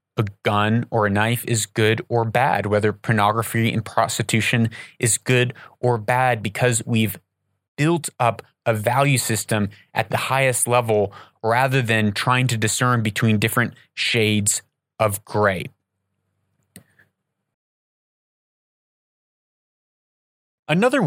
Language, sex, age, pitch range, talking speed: English, male, 30-49, 110-140 Hz, 110 wpm